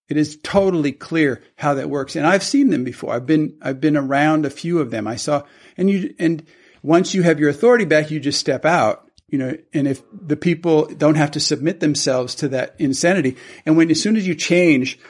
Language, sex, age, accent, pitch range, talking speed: English, male, 50-69, American, 145-170 Hz, 225 wpm